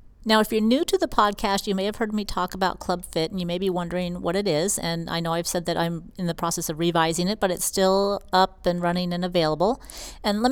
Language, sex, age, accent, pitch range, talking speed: English, female, 40-59, American, 175-215 Hz, 270 wpm